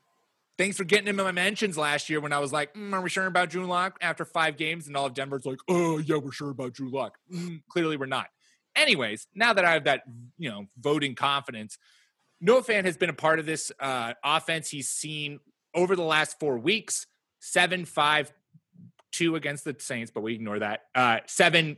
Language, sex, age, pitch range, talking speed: English, male, 30-49, 130-175 Hz, 210 wpm